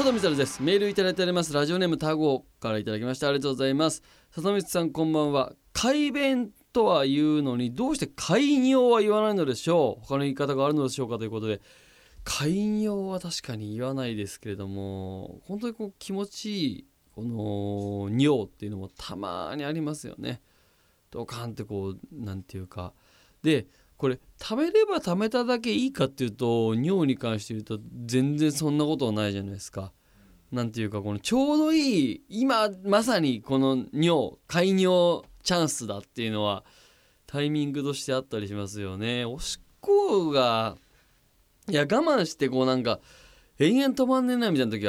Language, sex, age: Japanese, male, 20-39